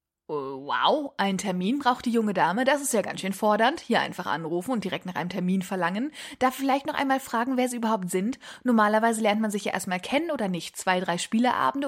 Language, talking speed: German, 215 wpm